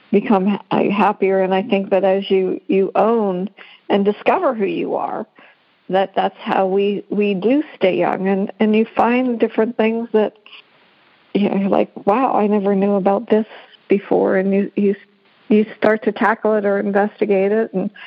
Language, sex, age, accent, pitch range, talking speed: English, female, 50-69, American, 200-230 Hz, 170 wpm